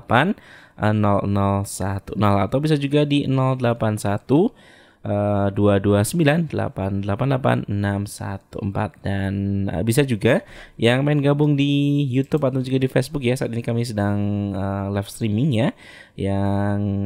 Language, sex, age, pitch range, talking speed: Indonesian, male, 20-39, 100-130 Hz, 100 wpm